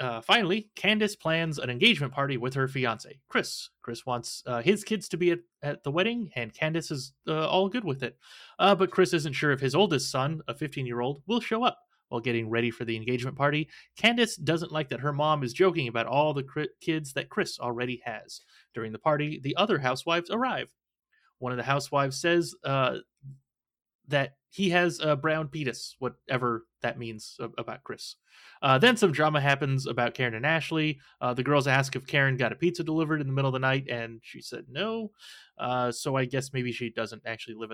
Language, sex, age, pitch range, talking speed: English, male, 30-49, 125-170 Hz, 205 wpm